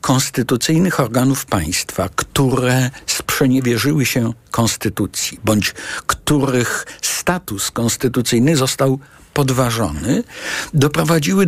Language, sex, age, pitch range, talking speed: Polish, male, 60-79, 125-175 Hz, 75 wpm